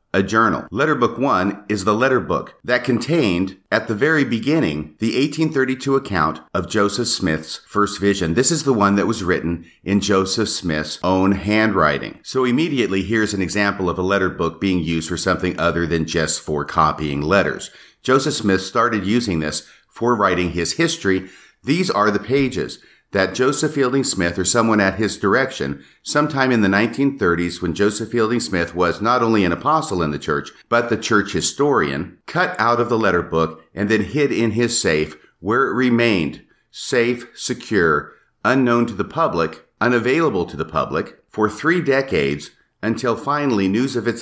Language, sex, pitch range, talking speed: English, male, 90-120 Hz, 175 wpm